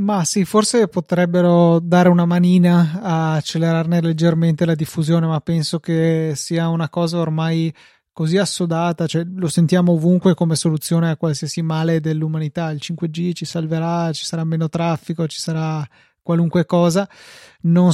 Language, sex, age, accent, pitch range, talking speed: Italian, male, 20-39, native, 160-175 Hz, 145 wpm